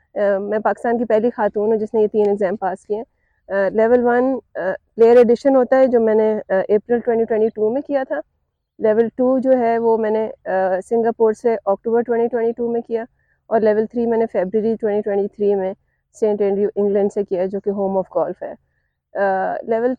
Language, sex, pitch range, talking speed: Urdu, female, 190-220 Hz, 200 wpm